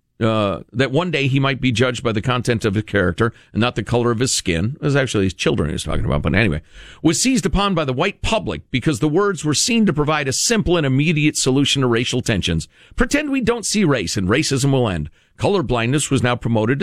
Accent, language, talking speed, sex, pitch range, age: American, English, 240 wpm, male, 115-175 Hz, 50-69